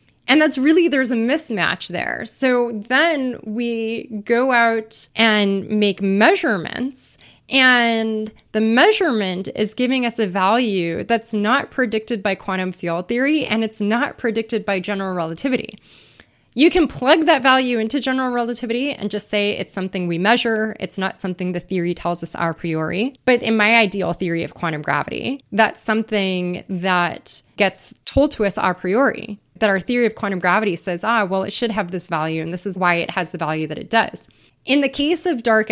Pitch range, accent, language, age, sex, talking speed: 190-245 Hz, American, English, 20-39, female, 180 wpm